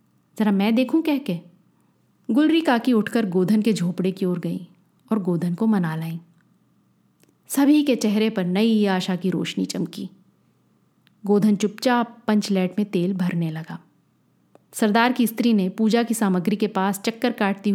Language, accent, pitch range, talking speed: Hindi, native, 185-235 Hz, 150 wpm